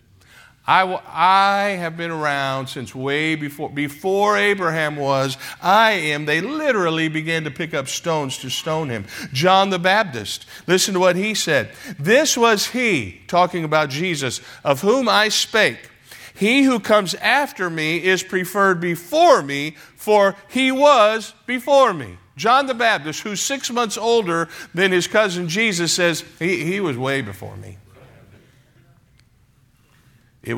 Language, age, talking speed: English, 50-69, 145 wpm